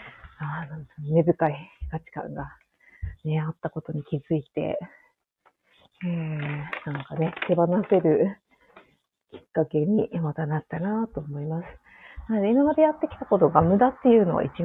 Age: 30-49